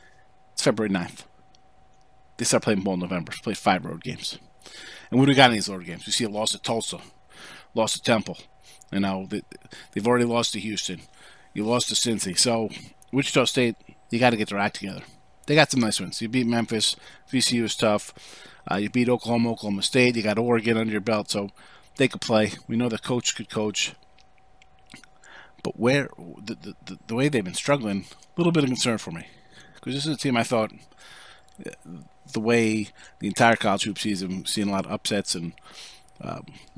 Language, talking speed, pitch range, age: English, 195 wpm, 105-140 Hz, 40-59